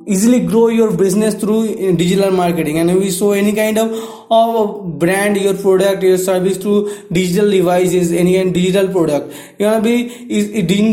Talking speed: 185 wpm